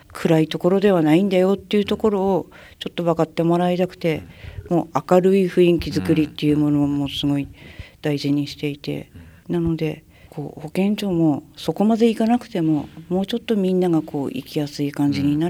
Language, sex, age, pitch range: Japanese, female, 50-69, 145-190 Hz